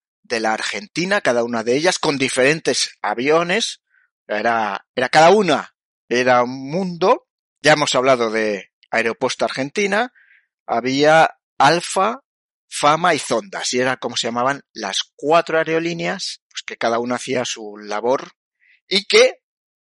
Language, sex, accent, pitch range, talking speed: Spanish, male, Spanish, 120-175 Hz, 135 wpm